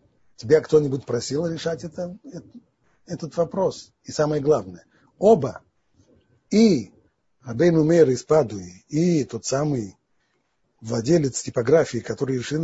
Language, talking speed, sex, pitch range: Russian, 100 wpm, male, 130-175 Hz